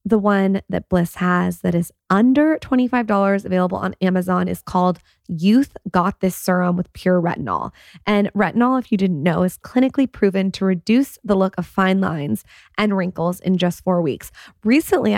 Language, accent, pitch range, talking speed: English, American, 185-225 Hz, 175 wpm